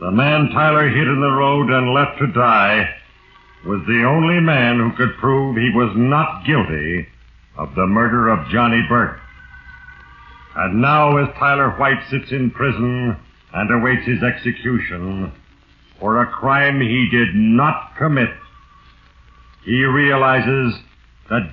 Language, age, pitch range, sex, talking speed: English, 60-79, 100-140 Hz, male, 140 wpm